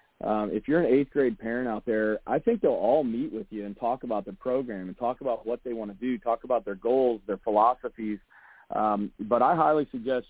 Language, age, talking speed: English, 40-59, 235 wpm